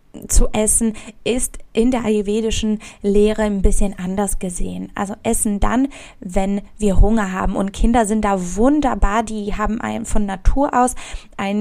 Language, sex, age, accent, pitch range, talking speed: German, female, 20-39, German, 205-240 Hz, 150 wpm